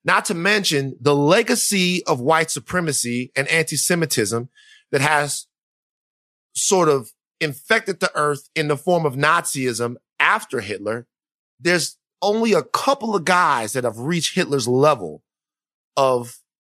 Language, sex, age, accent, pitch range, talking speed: English, male, 30-49, American, 140-195 Hz, 130 wpm